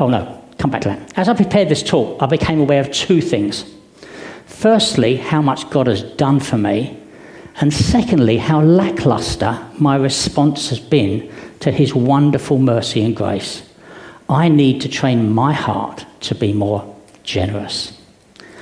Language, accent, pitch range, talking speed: English, British, 120-165 Hz, 160 wpm